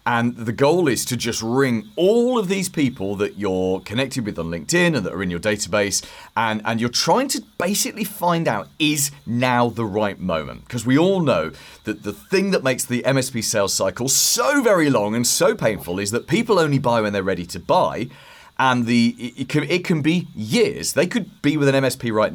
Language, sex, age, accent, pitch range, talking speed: English, male, 30-49, British, 105-140 Hz, 215 wpm